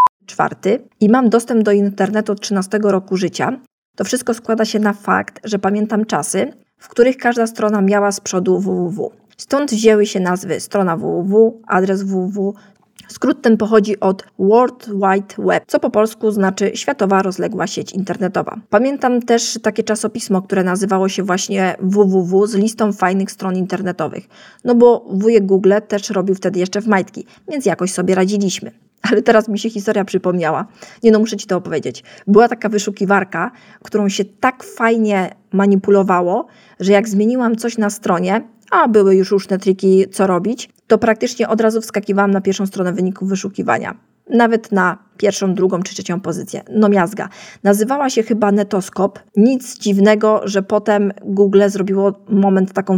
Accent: native